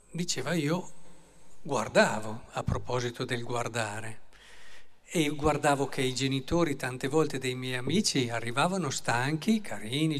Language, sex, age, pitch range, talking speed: Italian, male, 50-69, 125-165 Hz, 120 wpm